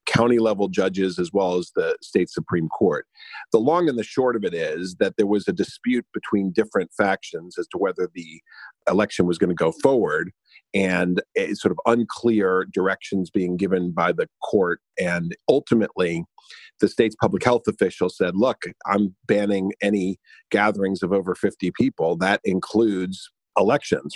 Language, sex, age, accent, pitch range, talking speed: English, male, 50-69, American, 90-105 Hz, 160 wpm